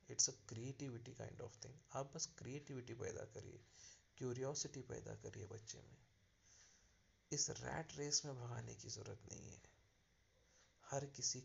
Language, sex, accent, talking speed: Hindi, male, native, 100 wpm